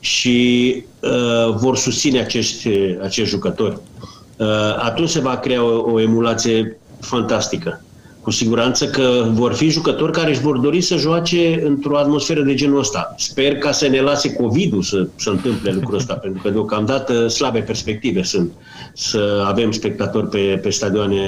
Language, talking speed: Romanian, 160 wpm